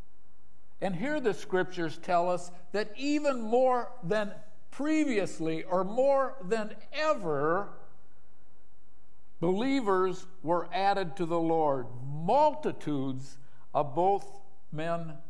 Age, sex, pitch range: 60-79, male, 145-215 Hz